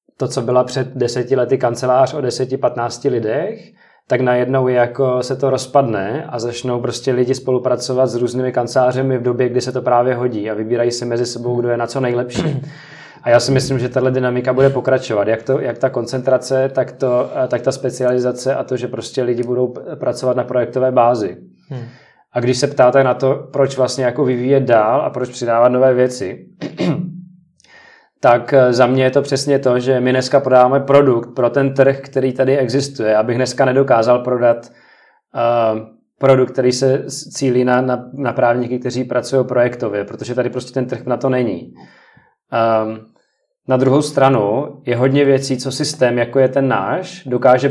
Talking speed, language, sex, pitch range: 180 wpm, Czech, male, 125-135 Hz